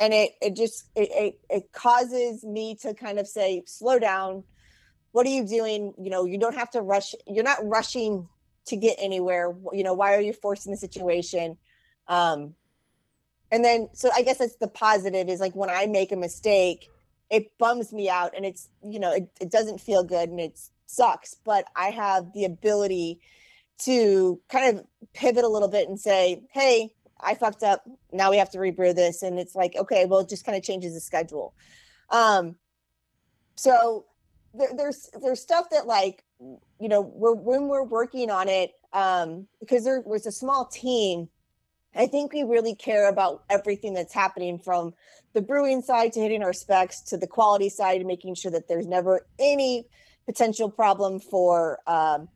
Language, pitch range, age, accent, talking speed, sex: English, 185-230 Hz, 20-39, American, 185 wpm, female